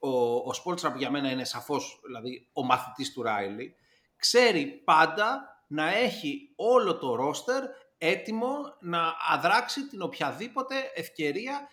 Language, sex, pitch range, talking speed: Greek, male, 190-295 Hz, 125 wpm